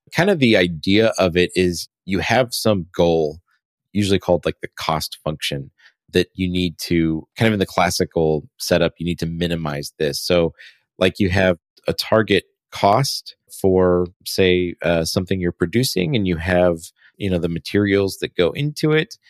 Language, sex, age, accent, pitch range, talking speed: English, male, 30-49, American, 85-95 Hz, 175 wpm